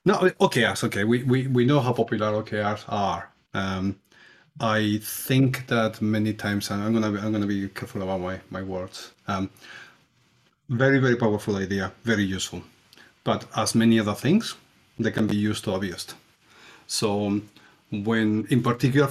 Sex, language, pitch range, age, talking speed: male, English, 100-115 Hz, 30-49, 165 wpm